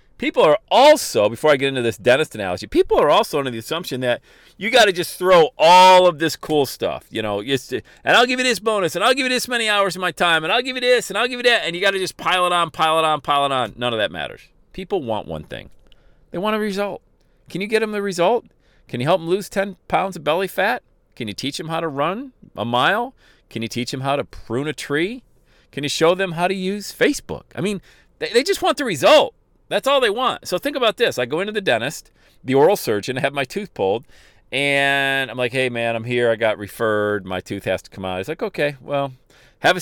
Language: English